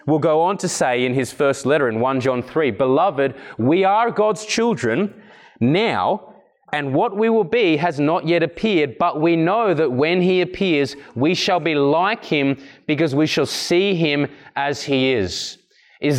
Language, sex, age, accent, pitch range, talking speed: English, male, 20-39, Australian, 140-185 Hz, 180 wpm